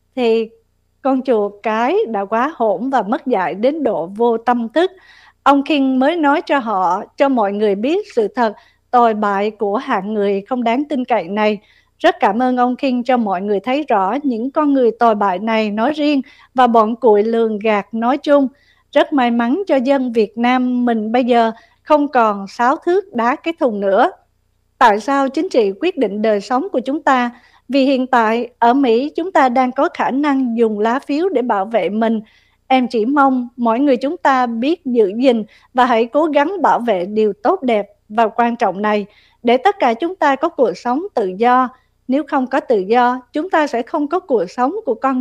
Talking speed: 205 wpm